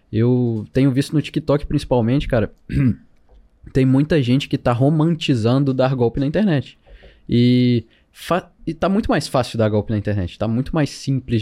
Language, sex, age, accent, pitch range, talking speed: Portuguese, male, 20-39, Brazilian, 110-130 Hz, 170 wpm